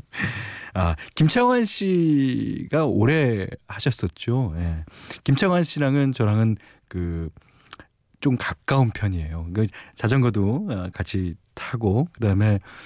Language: Korean